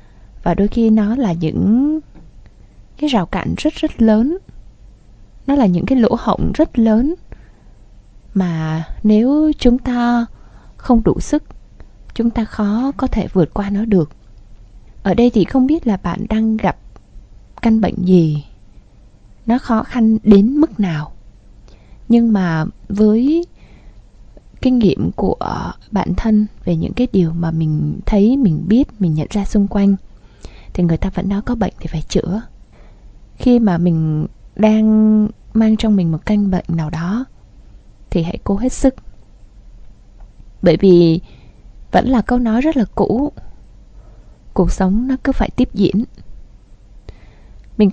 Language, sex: Vietnamese, female